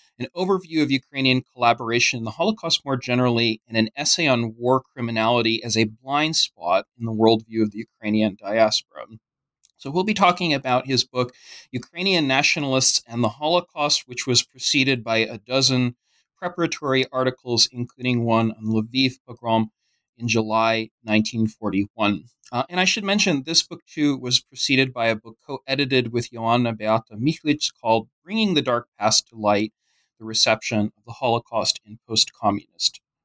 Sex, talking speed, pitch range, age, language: male, 155 wpm, 115-140 Hz, 30-49, English